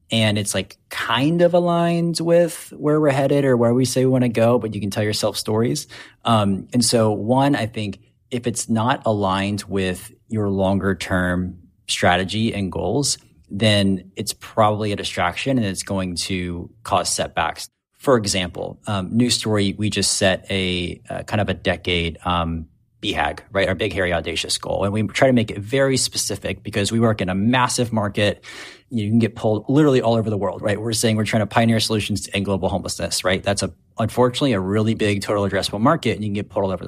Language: English